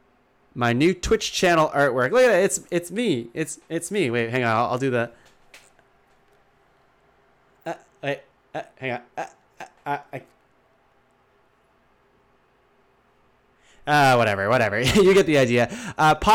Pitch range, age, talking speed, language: 125-170 Hz, 20-39, 130 wpm, English